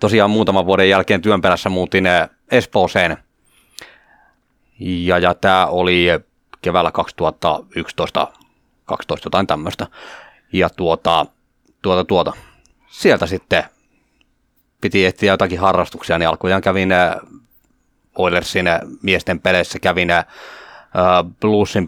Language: Finnish